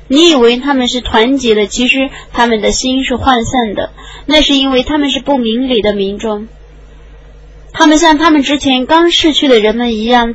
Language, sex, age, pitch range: Chinese, female, 20-39, 235-285 Hz